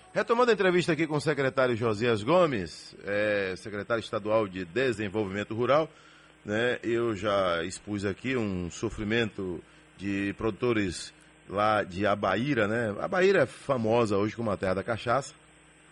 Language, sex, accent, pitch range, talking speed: Portuguese, male, Brazilian, 100-130 Hz, 140 wpm